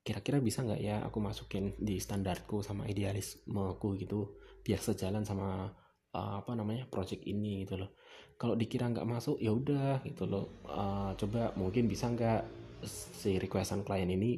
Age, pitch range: 20-39, 100-120 Hz